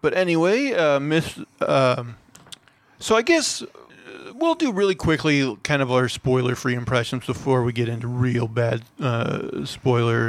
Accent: American